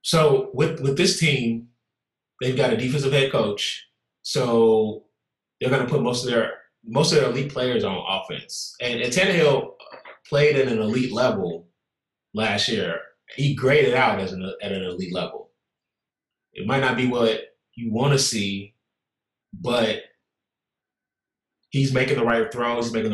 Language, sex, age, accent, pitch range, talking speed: English, male, 20-39, American, 115-140 Hz, 160 wpm